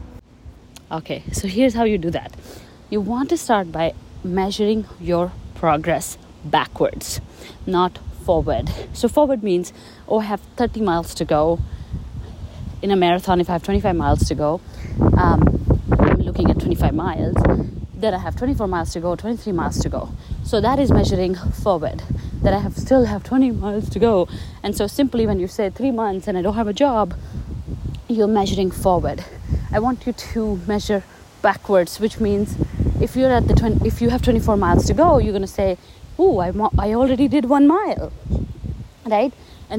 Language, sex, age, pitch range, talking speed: English, female, 30-49, 180-250 Hz, 180 wpm